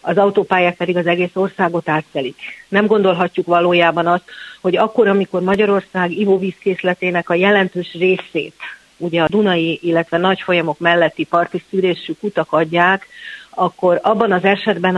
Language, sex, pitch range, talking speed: Hungarian, female, 170-195 Hz, 140 wpm